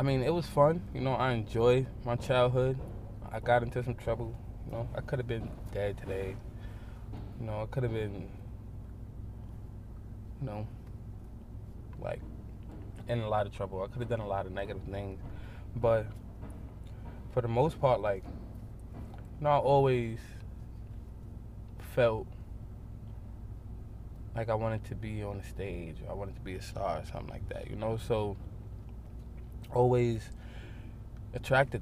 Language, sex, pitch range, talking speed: English, male, 105-115 Hz, 155 wpm